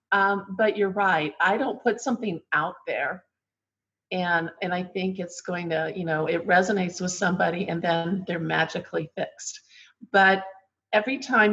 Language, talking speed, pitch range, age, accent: English, 160 wpm, 170-205 Hz, 50-69, American